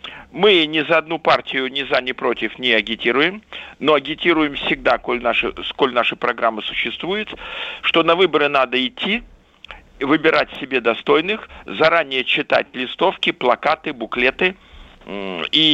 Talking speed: 120 wpm